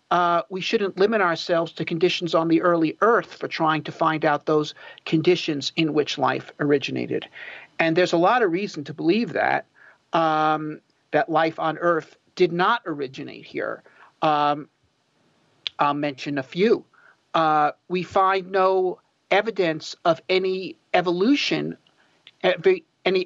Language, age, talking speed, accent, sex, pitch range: English, 50-69, 145 wpm, American, male, 160-195 Hz